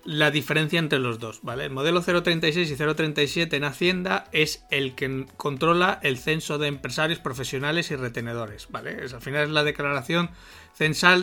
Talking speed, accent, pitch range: 155 wpm, Spanish, 135-165 Hz